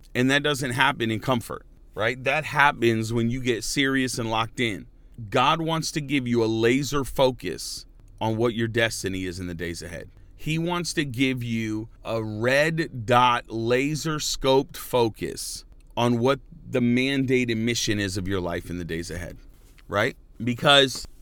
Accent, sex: American, male